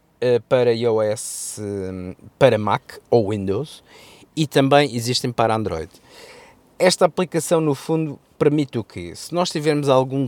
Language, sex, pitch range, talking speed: Portuguese, male, 115-150 Hz, 130 wpm